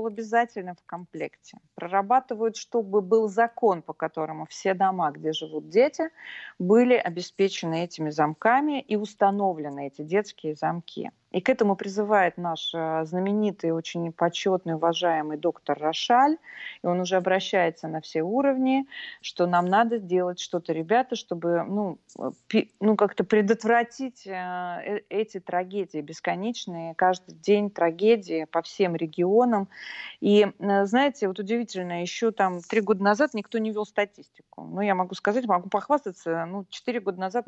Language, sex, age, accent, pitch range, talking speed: Russian, female, 30-49, native, 170-220 Hz, 135 wpm